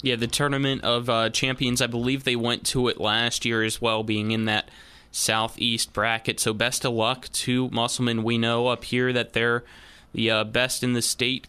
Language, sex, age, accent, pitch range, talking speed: English, male, 20-39, American, 115-125 Hz, 205 wpm